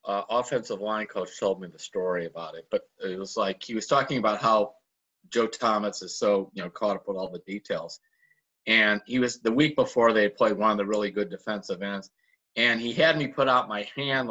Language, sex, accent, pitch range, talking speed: English, male, American, 120-175 Hz, 225 wpm